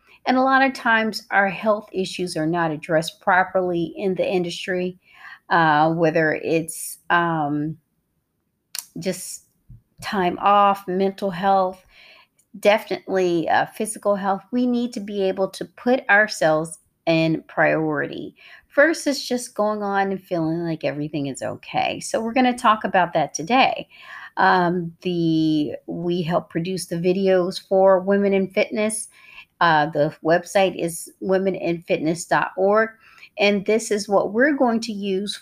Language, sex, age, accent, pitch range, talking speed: English, female, 40-59, American, 175-215 Hz, 135 wpm